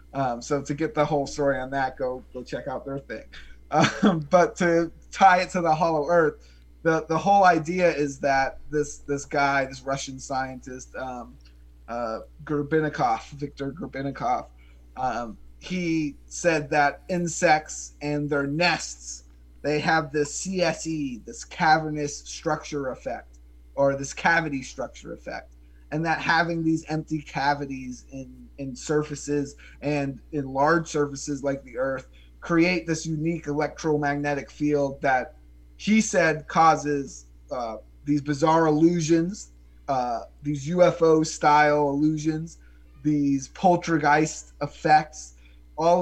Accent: American